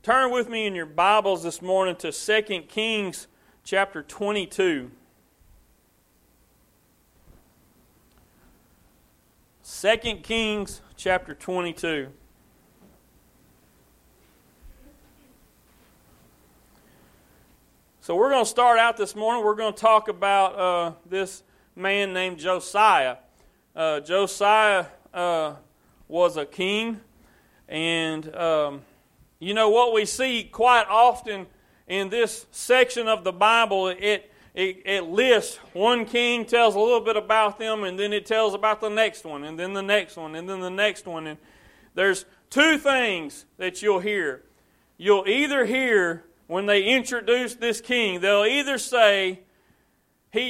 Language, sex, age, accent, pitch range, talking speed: English, male, 40-59, American, 175-225 Hz, 125 wpm